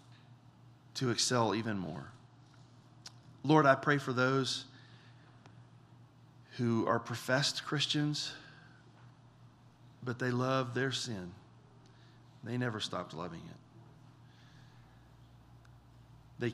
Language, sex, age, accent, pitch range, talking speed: English, male, 40-59, American, 110-130 Hz, 85 wpm